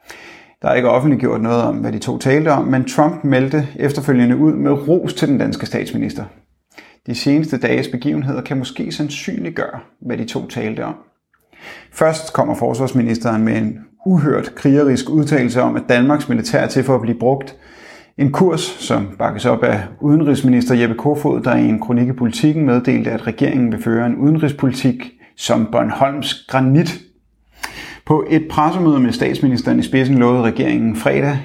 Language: Danish